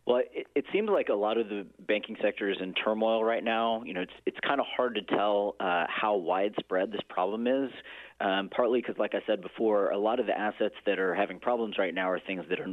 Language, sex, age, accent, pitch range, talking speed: English, male, 30-49, American, 95-115 Hz, 255 wpm